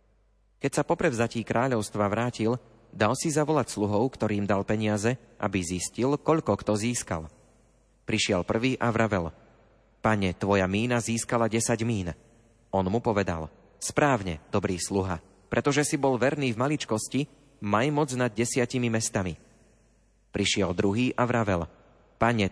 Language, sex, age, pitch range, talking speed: Slovak, male, 30-49, 105-125 Hz, 130 wpm